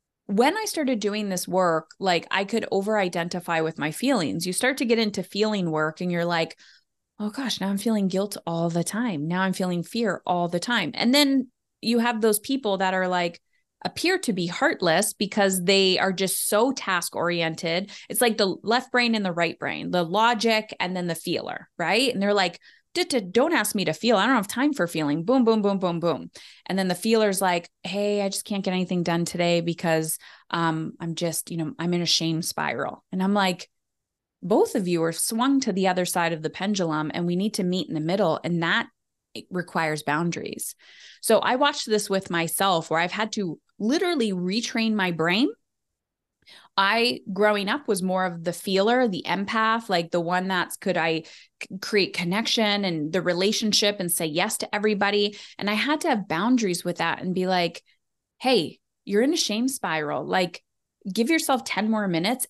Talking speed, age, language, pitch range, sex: 200 wpm, 20-39, English, 175-230 Hz, female